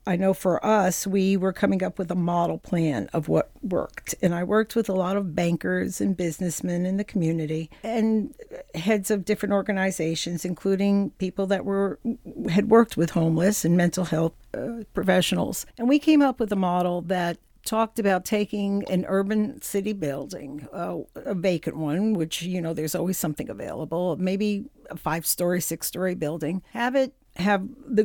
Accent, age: American, 50-69